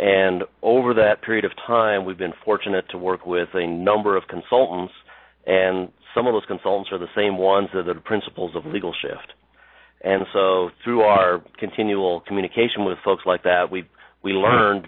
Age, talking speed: 40-59, 180 wpm